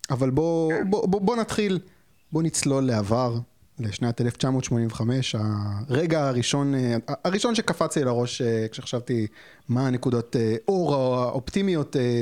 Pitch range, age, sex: 120-160 Hz, 30-49, male